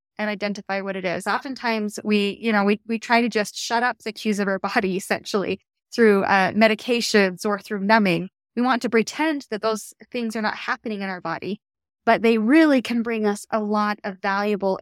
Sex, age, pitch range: female, 20-39, 195-235 Hz